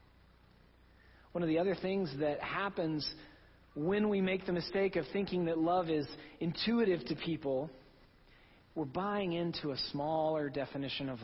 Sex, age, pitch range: male, 40-59, 110-160 Hz